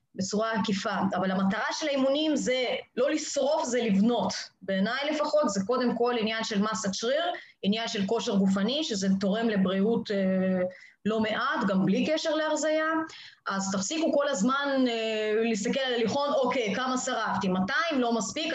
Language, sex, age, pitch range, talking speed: Hebrew, female, 20-39, 200-270 Hz, 150 wpm